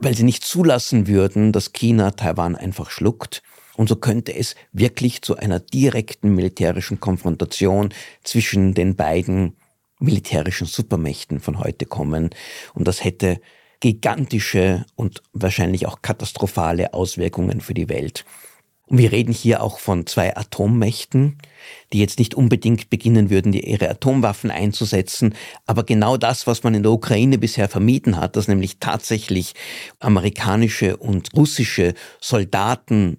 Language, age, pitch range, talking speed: German, 50-69, 95-115 Hz, 135 wpm